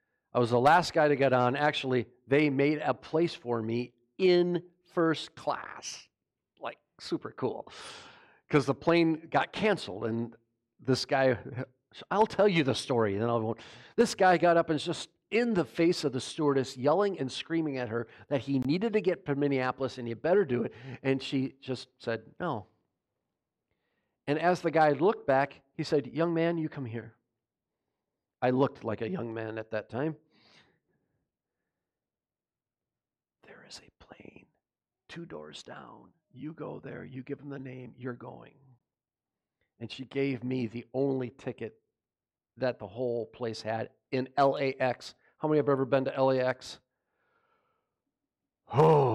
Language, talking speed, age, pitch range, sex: English, 165 wpm, 50-69, 120-155 Hz, male